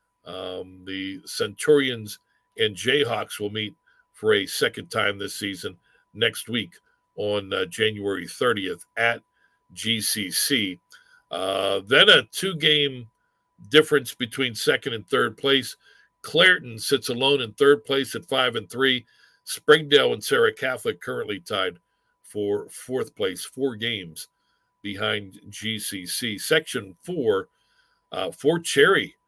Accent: American